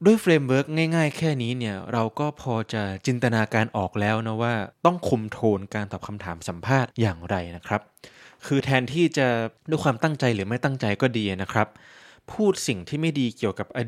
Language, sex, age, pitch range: Thai, male, 20-39, 110-140 Hz